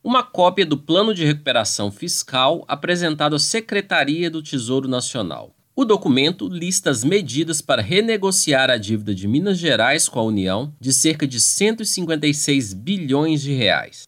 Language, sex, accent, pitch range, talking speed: Portuguese, male, Brazilian, 130-175 Hz, 150 wpm